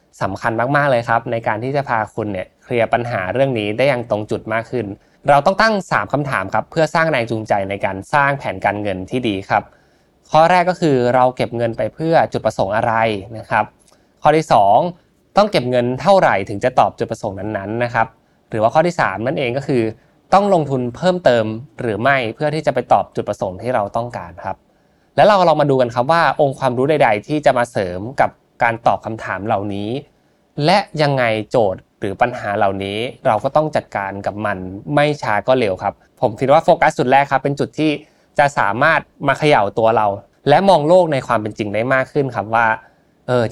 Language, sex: Thai, male